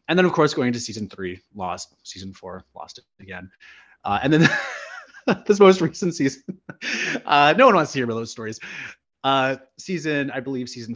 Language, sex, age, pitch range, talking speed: English, male, 30-49, 110-130 Hz, 190 wpm